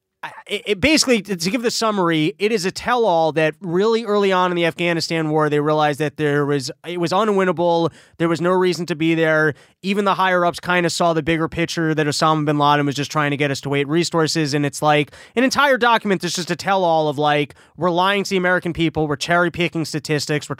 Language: English